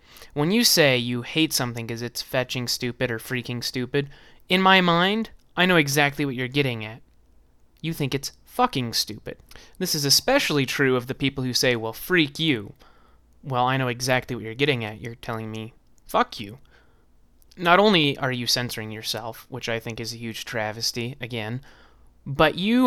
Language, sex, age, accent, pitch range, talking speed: English, male, 20-39, American, 115-155 Hz, 180 wpm